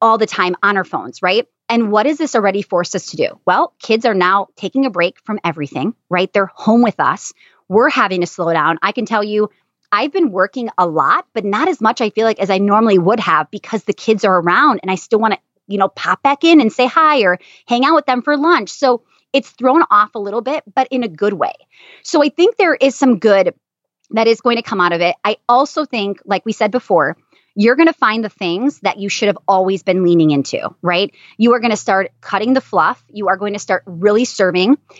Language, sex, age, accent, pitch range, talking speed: English, female, 30-49, American, 190-240 Hz, 250 wpm